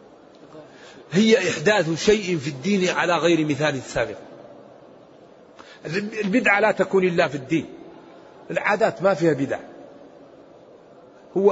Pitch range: 185-215 Hz